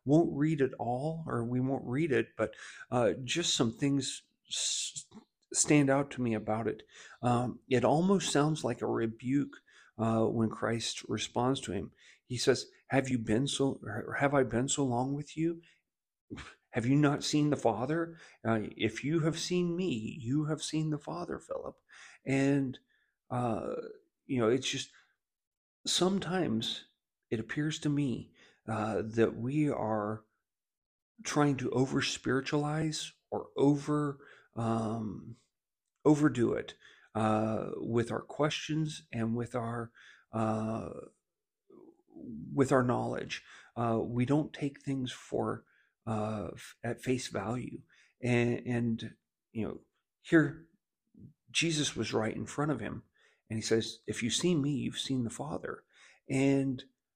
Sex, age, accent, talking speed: male, 50-69, American, 140 wpm